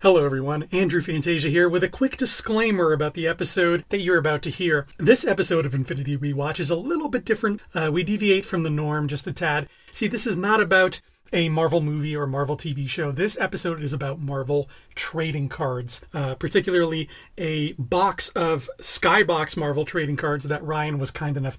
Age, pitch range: 30-49, 150-185 Hz